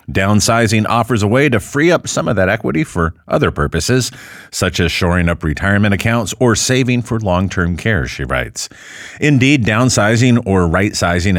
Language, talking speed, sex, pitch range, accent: English, 165 wpm, male, 90-125 Hz, American